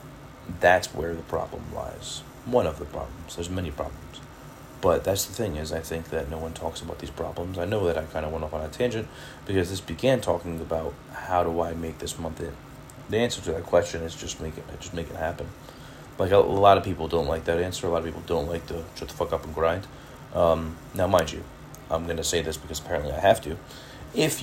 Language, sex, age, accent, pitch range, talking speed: English, male, 30-49, American, 80-90 Hz, 245 wpm